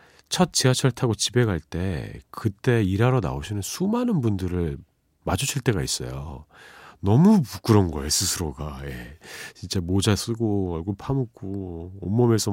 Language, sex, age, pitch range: Korean, male, 40-59, 85-125 Hz